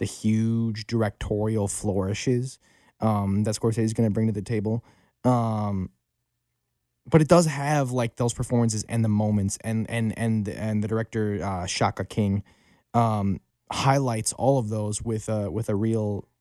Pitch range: 100-120 Hz